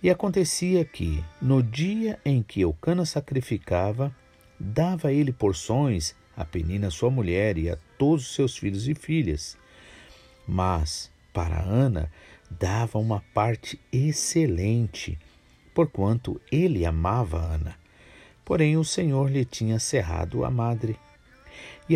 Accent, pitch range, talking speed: Brazilian, 85-135 Hz, 120 wpm